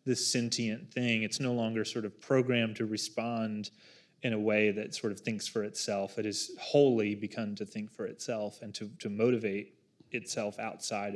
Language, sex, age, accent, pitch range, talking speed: English, male, 20-39, American, 110-125 Hz, 175 wpm